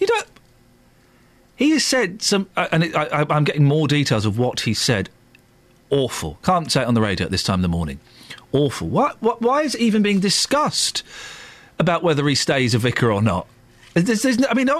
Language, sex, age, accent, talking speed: English, male, 40-59, British, 210 wpm